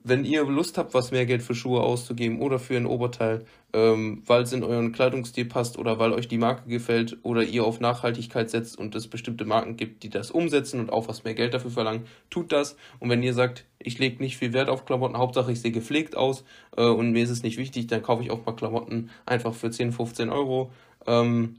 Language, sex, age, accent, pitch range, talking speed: German, male, 10-29, German, 115-125 Hz, 235 wpm